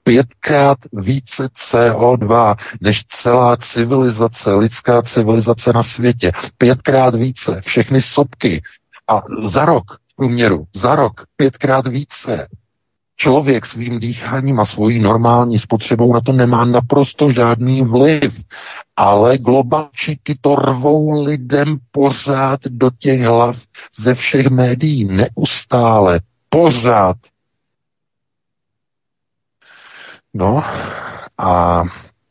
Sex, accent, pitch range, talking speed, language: male, native, 95-125 Hz, 95 wpm, Czech